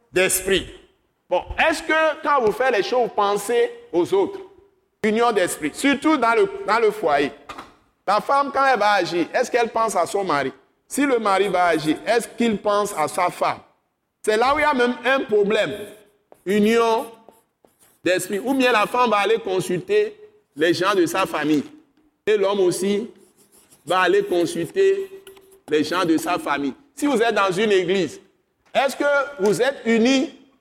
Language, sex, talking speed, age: French, male, 175 wpm, 50-69